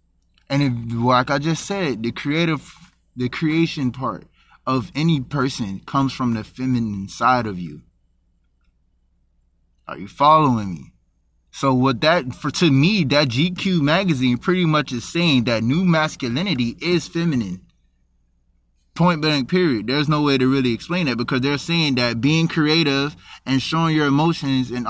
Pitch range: 120-155 Hz